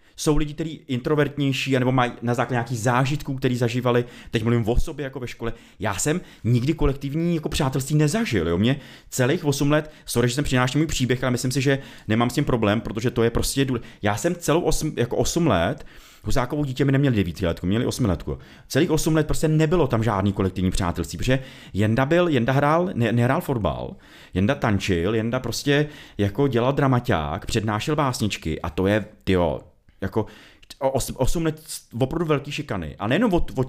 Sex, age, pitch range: male, 30-49, 110-150 Hz